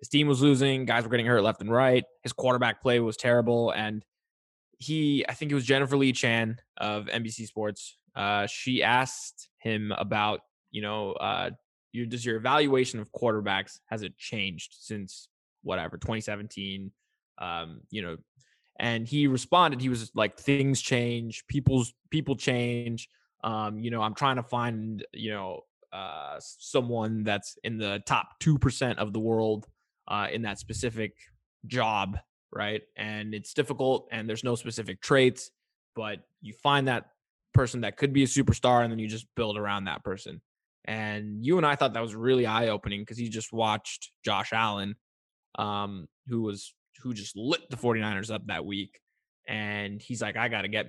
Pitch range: 105-130 Hz